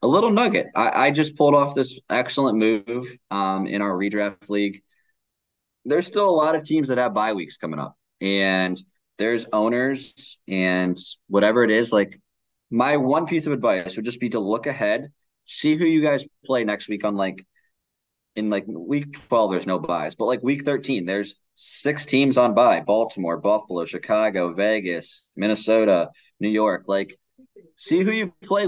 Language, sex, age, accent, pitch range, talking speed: English, male, 20-39, American, 95-135 Hz, 175 wpm